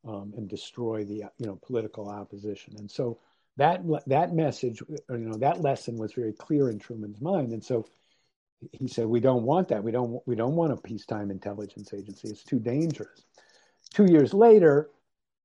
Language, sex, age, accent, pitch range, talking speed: English, male, 50-69, American, 115-150 Hz, 185 wpm